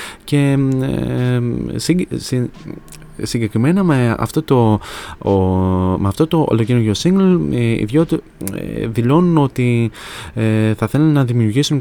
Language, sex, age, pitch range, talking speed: Greek, male, 30-49, 110-135 Hz, 90 wpm